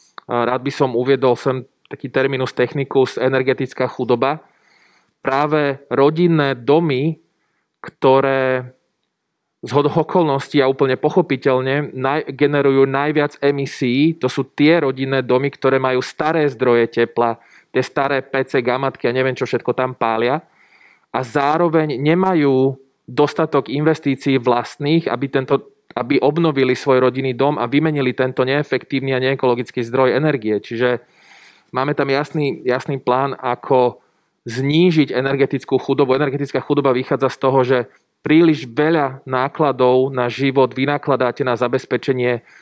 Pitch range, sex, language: 125-145 Hz, male, Slovak